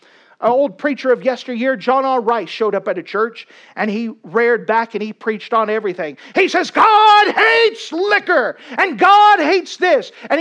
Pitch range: 200-280 Hz